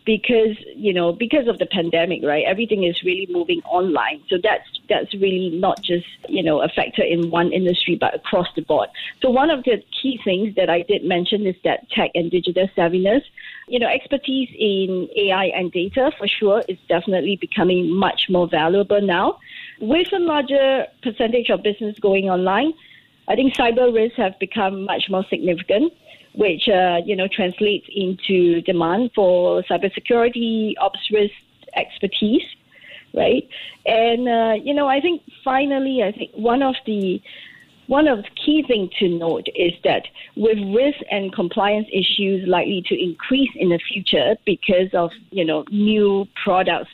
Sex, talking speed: female, 165 wpm